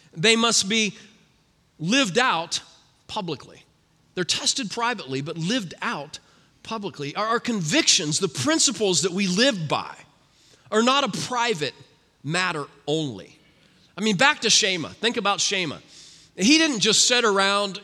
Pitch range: 185-260 Hz